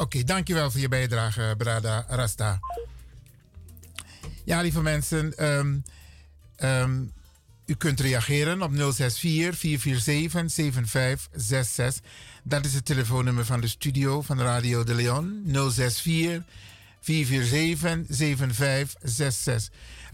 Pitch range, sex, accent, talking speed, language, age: 120-160 Hz, male, Dutch, 90 wpm, Dutch, 50-69